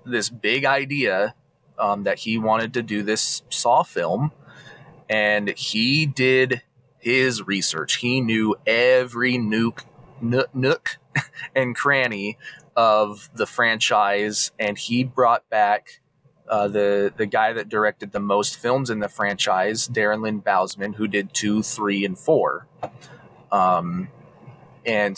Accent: American